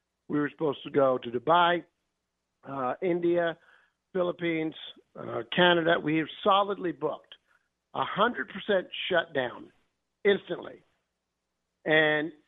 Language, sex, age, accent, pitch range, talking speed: English, male, 50-69, American, 145-195 Hz, 100 wpm